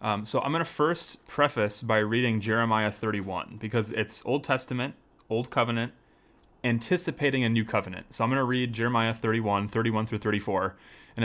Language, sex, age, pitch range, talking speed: English, male, 30-49, 105-125 Hz, 170 wpm